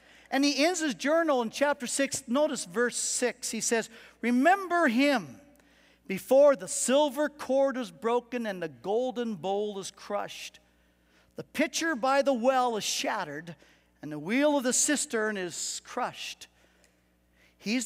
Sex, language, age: male, English, 50-69